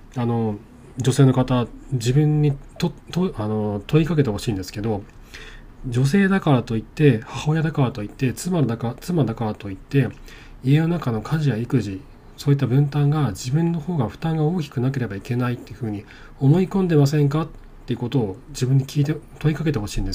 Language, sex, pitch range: Japanese, male, 110-145 Hz